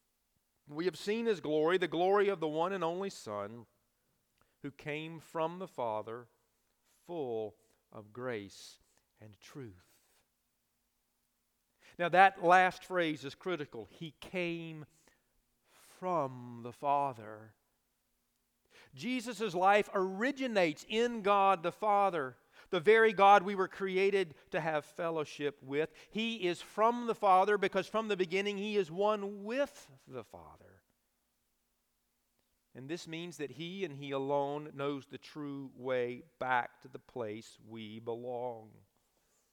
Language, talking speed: English, 130 wpm